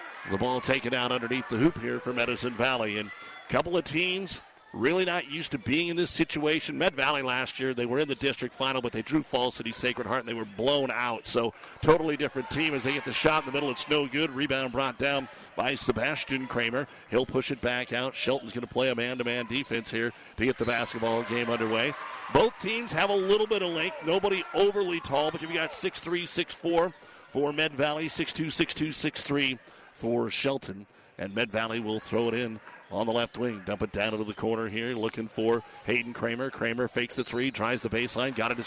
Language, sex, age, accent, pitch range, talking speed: English, male, 50-69, American, 120-150 Hz, 215 wpm